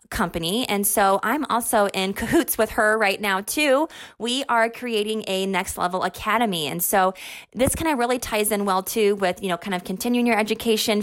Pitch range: 185-230 Hz